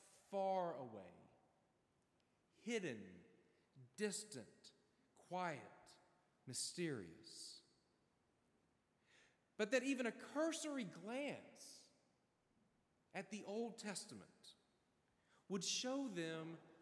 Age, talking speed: 40-59, 70 wpm